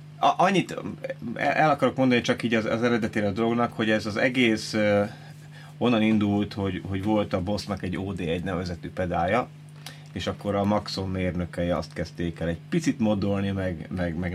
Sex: male